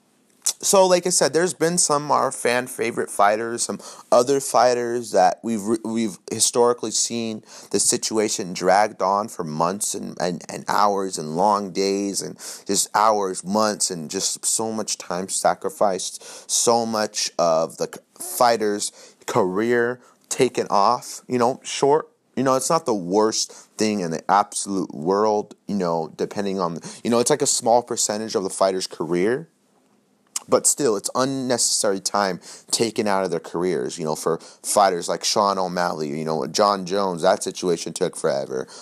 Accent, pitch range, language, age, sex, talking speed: American, 100-120 Hz, English, 30-49, male, 160 wpm